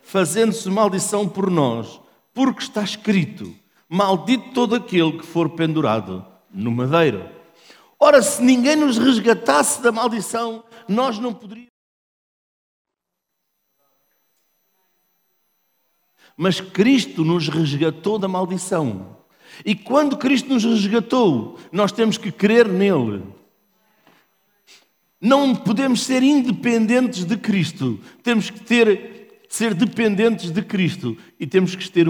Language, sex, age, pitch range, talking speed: Portuguese, male, 50-69, 170-230 Hz, 110 wpm